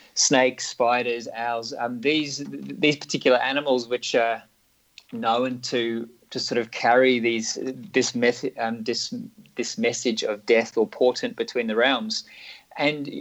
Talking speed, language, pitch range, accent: 140 wpm, English, 115-140 Hz, Australian